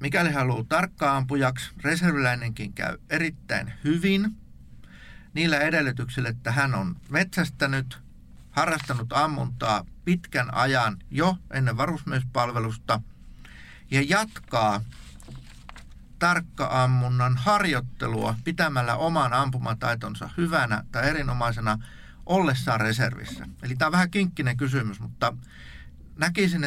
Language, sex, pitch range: Finnish, male, 110-150 Hz